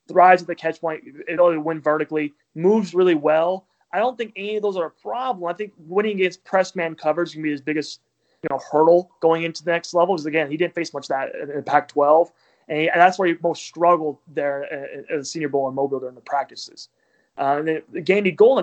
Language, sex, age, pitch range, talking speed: English, male, 20-39, 150-180 Hz, 230 wpm